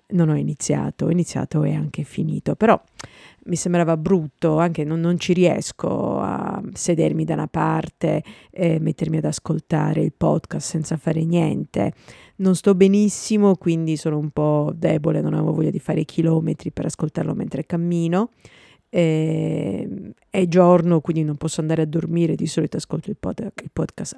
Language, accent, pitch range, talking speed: Italian, native, 160-175 Hz, 165 wpm